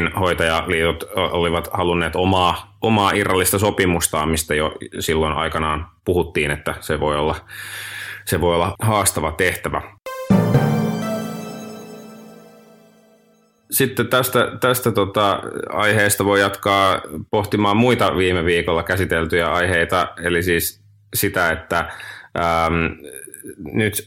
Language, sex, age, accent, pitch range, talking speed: Finnish, male, 30-49, native, 85-105 Hz, 100 wpm